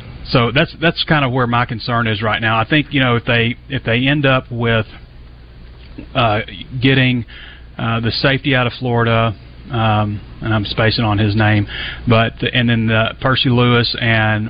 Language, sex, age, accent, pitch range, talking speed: English, male, 30-49, American, 110-130 Hz, 185 wpm